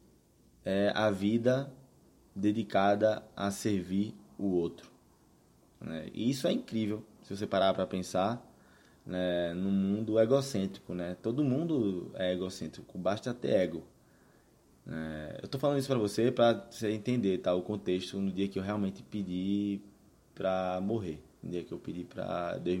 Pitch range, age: 90-105 Hz, 20-39